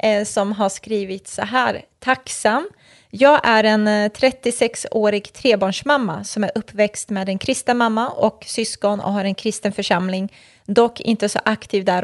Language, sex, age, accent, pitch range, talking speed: Swedish, female, 20-39, native, 200-230 Hz, 145 wpm